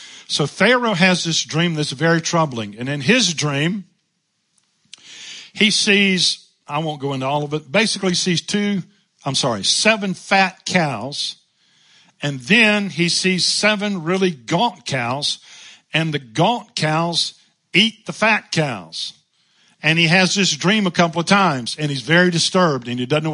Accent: American